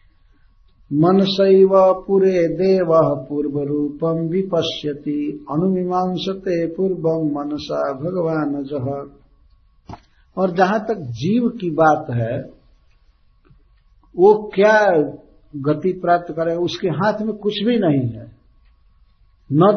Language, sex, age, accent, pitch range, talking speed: Hindi, male, 50-69, native, 130-190 Hz, 95 wpm